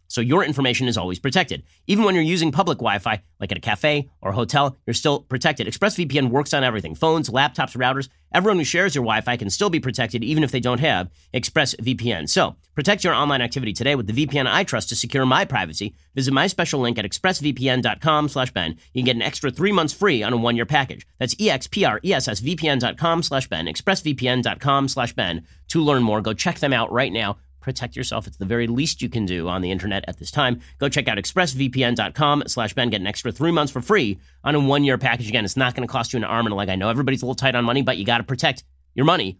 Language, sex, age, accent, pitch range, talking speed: English, male, 40-59, American, 110-145 Hz, 230 wpm